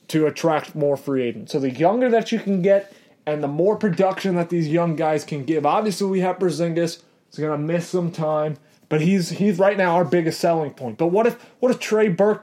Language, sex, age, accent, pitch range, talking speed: English, male, 30-49, American, 165-215 Hz, 230 wpm